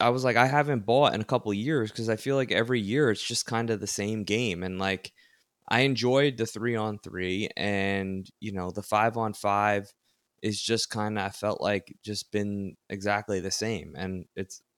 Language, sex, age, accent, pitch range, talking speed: English, male, 20-39, American, 95-110 Hz, 215 wpm